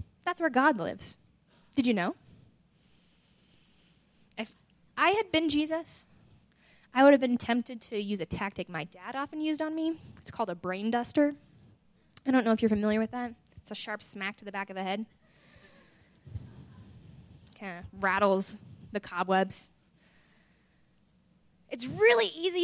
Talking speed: 155 wpm